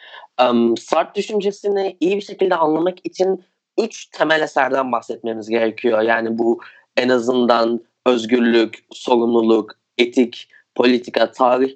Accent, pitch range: native, 120-165 Hz